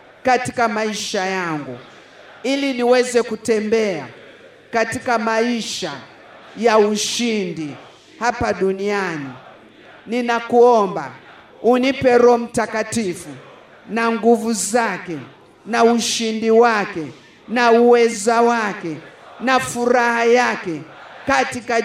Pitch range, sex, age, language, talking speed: 210-255 Hz, male, 50-69, Swahili, 80 wpm